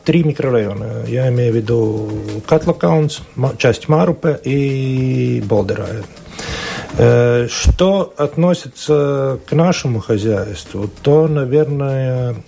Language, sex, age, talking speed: Russian, male, 50-69, 85 wpm